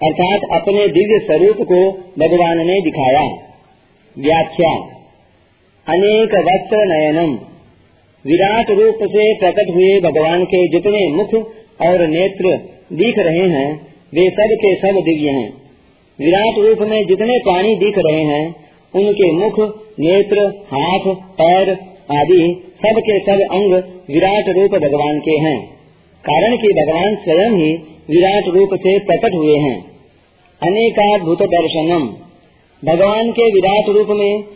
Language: Hindi